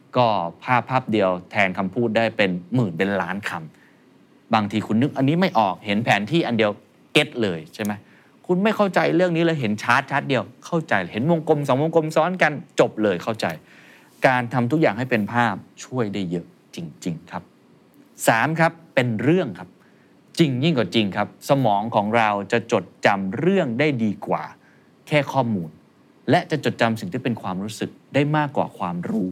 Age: 20-39